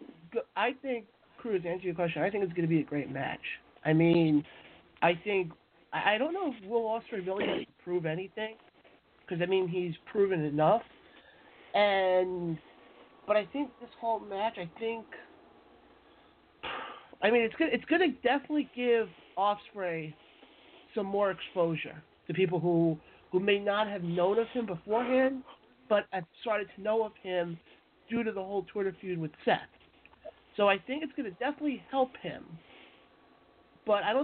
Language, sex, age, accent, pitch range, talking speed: English, male, 40-59, American, 175-245 Hz, 165 wpm